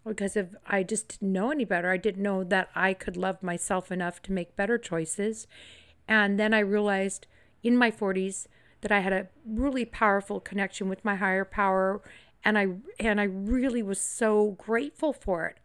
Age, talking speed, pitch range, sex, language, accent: 50-69, 190 wpm, 190-220 Hz, female, English, American